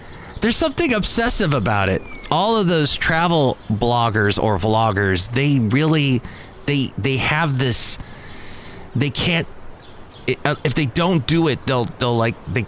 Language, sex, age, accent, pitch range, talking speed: English, male, 30-49, American, 105-150 Hz, 135 wpm